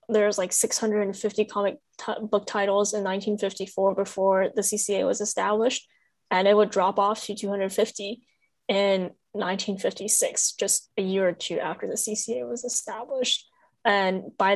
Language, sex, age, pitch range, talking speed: English, female, 10-29, 190-225 Hz, 140 wpm